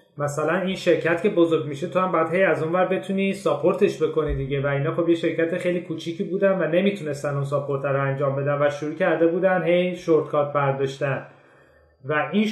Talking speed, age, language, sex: 190 wpm, 30-49, Persian, male